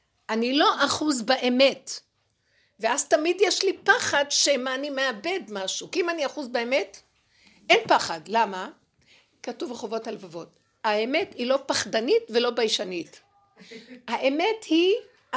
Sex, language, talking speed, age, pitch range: female, Hebrew, 125 wpm, 60-79, 225-340 Hz